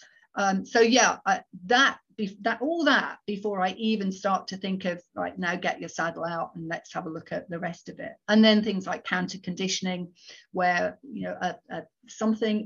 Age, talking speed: 50-69, 205 wpm